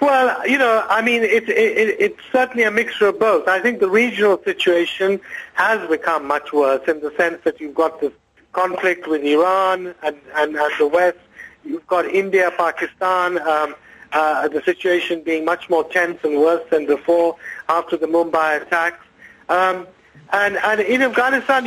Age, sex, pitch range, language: 50-69, male, 170-210 Hz, English